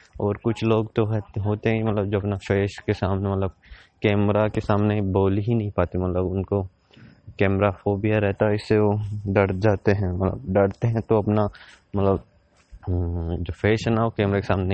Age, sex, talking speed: 20-39, male, 185 wpm